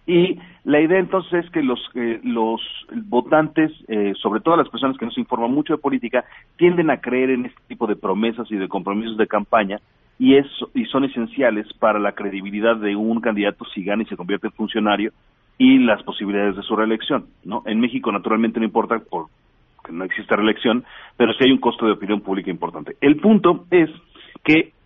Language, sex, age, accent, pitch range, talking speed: Spanish, male, 40-59, Mexican, 105-135 Hz, 190 wpm